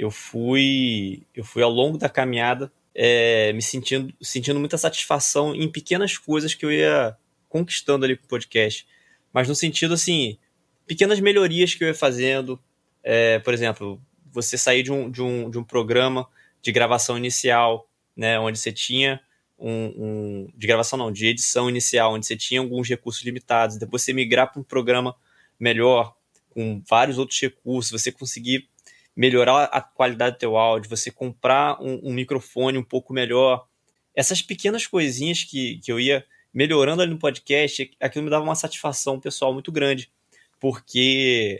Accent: Brazilian